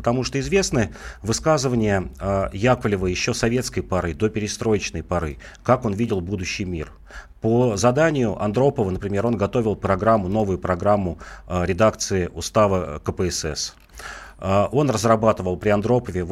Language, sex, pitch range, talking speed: Russian, male, 90-115 Hz, 120 wpm